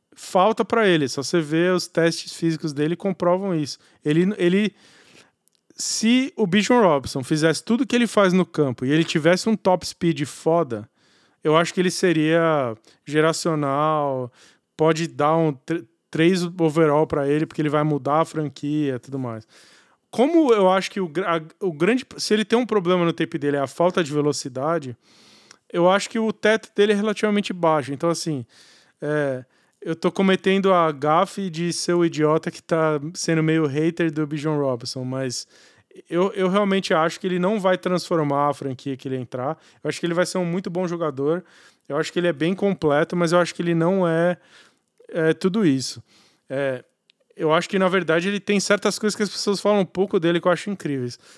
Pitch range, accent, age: 150-185 Hz, Brazilian, 20-39